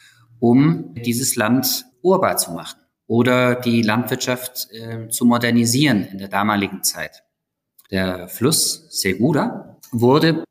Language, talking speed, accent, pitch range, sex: German, 115 wpm, German, 105-140 Hz, male